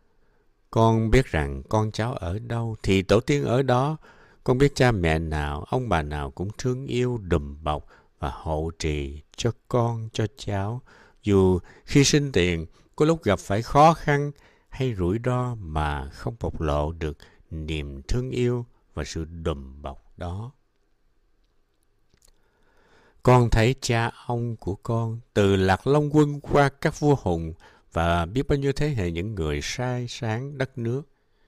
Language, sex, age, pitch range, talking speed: Vietnamese, male, 60-79, 85-125 Hz, 160 wpm